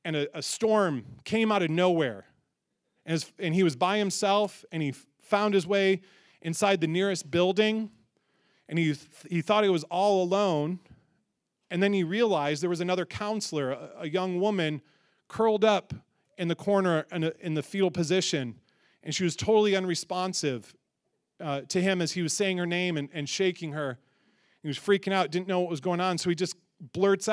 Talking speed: 195 wpm